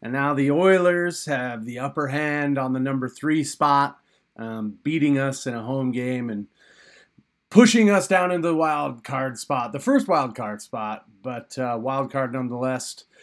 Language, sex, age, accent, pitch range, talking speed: English, male, 30-49, American, 125-155 Hz, 175 wpm